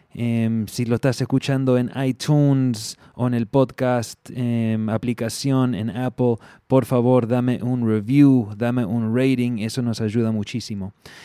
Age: 20-39